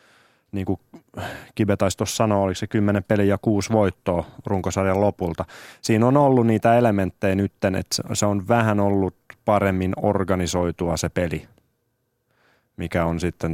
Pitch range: 95-110 Hz